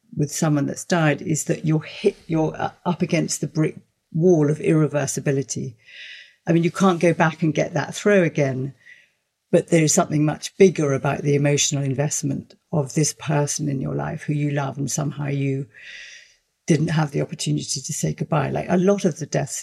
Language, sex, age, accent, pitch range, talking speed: English, female, 50-69, British, 140-165 Hz, 185 wpm